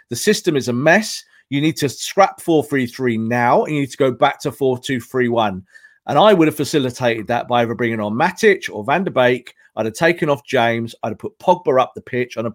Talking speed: 240 wpm